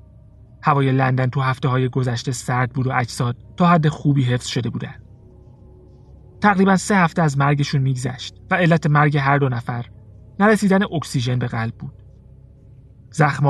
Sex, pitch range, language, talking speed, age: male, 120-145 Hz, Persian, 145 wpm, 30-49